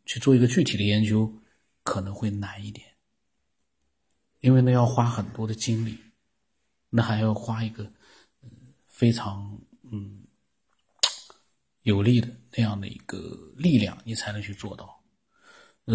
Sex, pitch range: male, 105-120 Hz